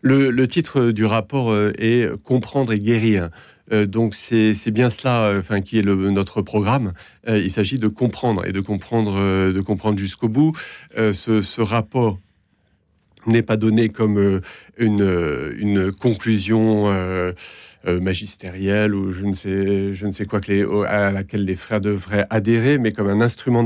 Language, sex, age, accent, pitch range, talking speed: French, male, 50-69, French, 95-115 Hz, 160 wpm